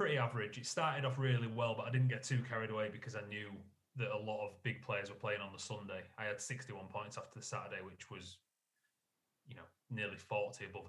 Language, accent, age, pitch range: English, British, 30-49, 105-125 Hz